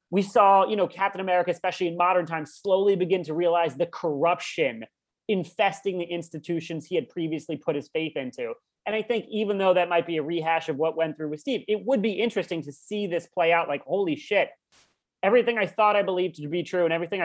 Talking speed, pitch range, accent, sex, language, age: 225 wpm, 160-205 Hz, American, male, English, 30-49